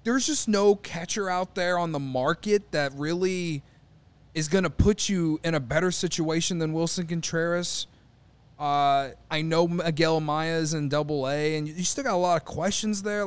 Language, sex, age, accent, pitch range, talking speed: English, male, 20-39, American, 145-205 Hz, 180 wpm